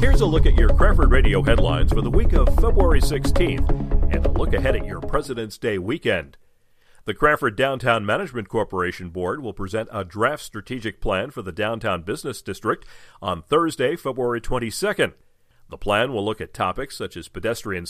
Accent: American